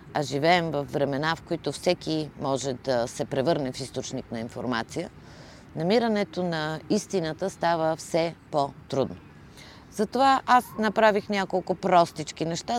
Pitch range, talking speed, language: 145-190 Hz, 125 wpm, Bulgarian